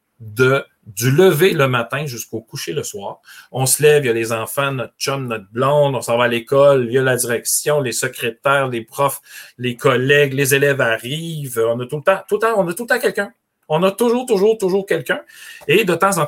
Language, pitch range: French, 120-155 Hz